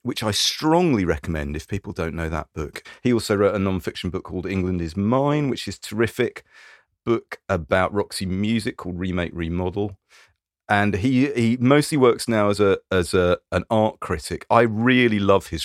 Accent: British